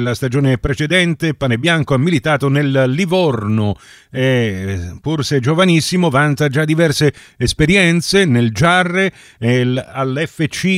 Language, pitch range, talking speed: Italian, 125-170 Hz, 110 wpm